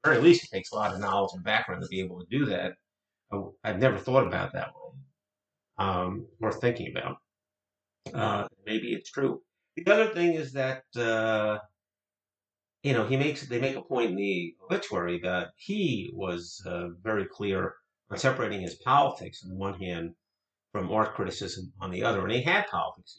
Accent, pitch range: American, 100-130 Hz